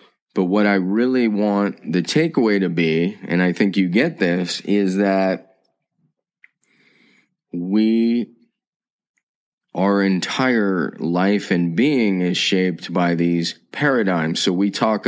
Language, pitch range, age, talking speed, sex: English, 90-100 Hz, 30-49, 125 wpm, male